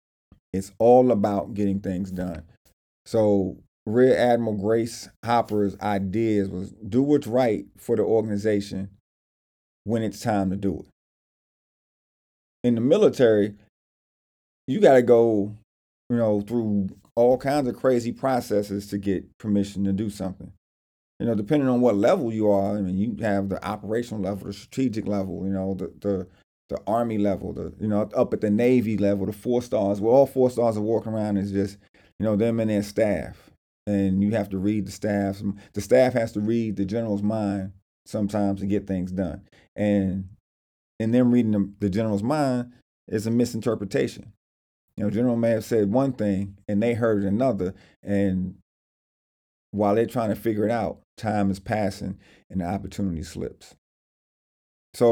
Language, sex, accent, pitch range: English, male, American, 95-115 Hz